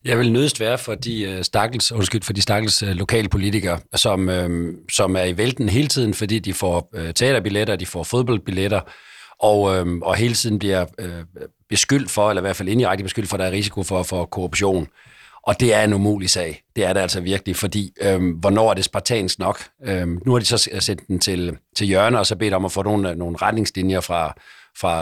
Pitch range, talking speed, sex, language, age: 95-110 Hz, 210 wpm, male, Danish, 40-59